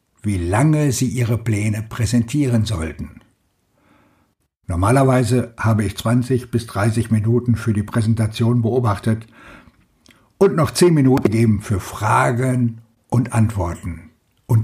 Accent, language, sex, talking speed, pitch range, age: German, German, male, 115 wpm, 110-135 Hz, 60-79